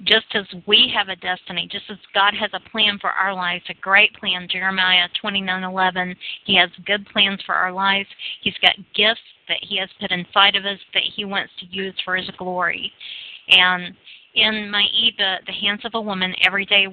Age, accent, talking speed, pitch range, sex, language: 40-59, American, 195 wpm, 185-210 Hz, female, English